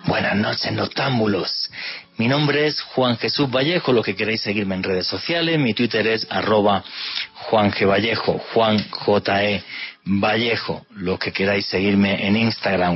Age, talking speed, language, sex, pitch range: 40-59, 155 wpm, Spanish, male, 95-115 Hz